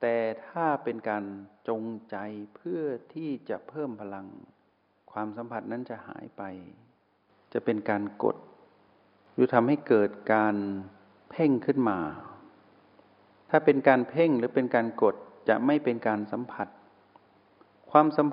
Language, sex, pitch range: Thai, male, 100-130 Hz